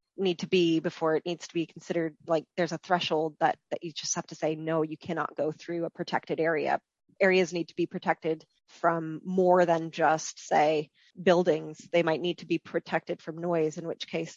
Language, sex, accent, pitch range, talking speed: English, female, American, 160-185 Hz, 210 wpm